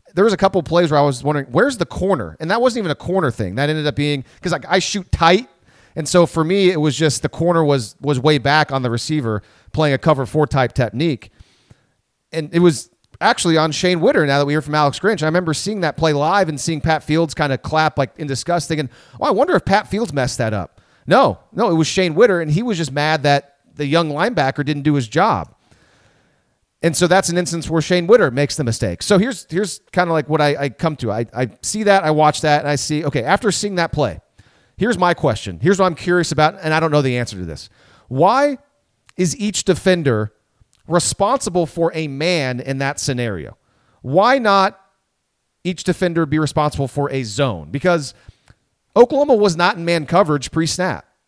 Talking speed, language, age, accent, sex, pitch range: 220 wpm, English, 40-59, American, male, 140-180 Hz